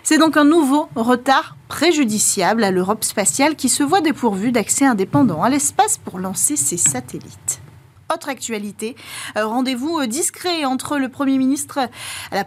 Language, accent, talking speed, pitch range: French, French, 145 wpm, 220-290 Hz